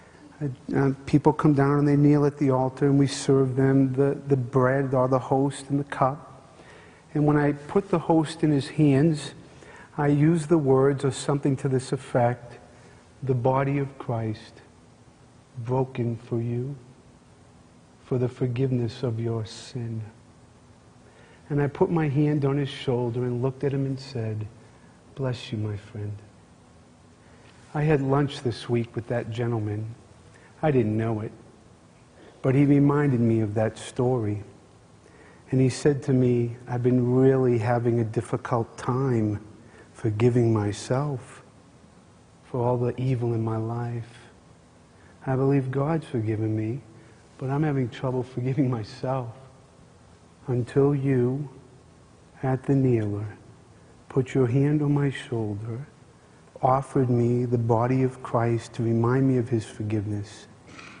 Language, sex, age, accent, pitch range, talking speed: English, male, 40-59, American, 115-140 Hz, 145 wpm